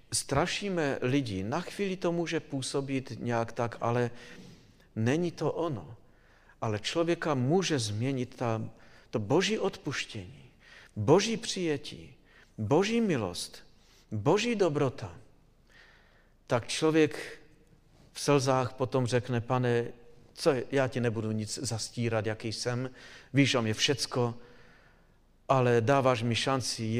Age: 50-69